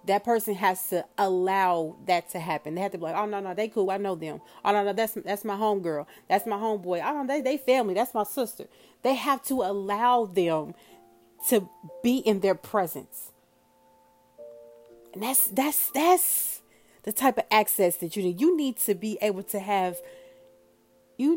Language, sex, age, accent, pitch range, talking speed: English, female, 30-49, American, 175-250 Hz, 190 wpm